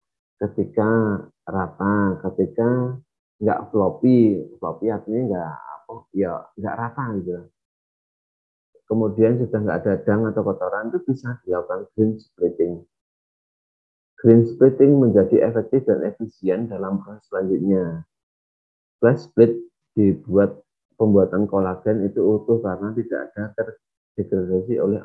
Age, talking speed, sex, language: 30-49, 110 wpm, male, Indonesian